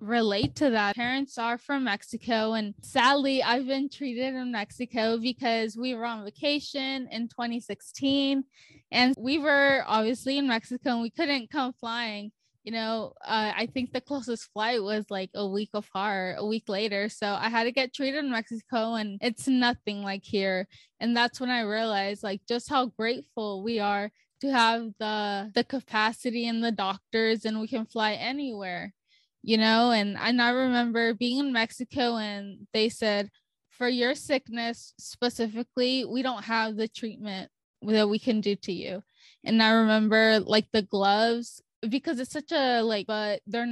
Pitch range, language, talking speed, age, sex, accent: 215-250 Hz, English, 170 wpm, 10-29, female, American